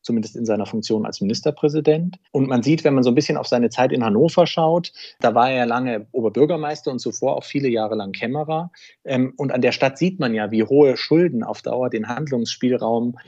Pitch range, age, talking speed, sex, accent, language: 115-140 Hz, 40-59, 210 wpm, male, German, German